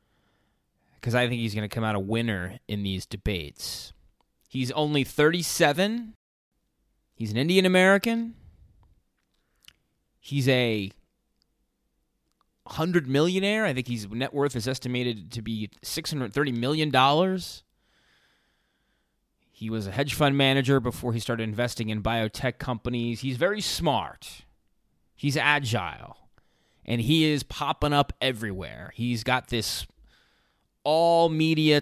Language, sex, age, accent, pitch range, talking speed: English, male, 20-39, American, 115-150 Hz, 120 wpm